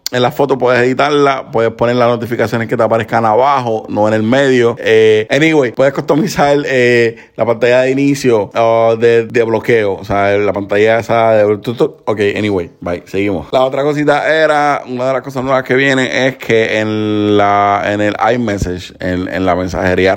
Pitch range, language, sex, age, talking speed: 105-125 Hz, Spanish, male, 30-49, 185 wpm